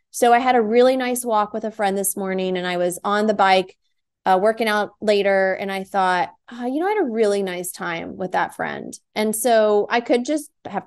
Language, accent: English, American